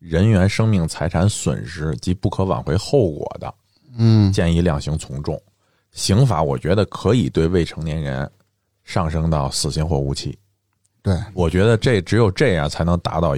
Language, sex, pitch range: Chinese, male, 85-110 Hz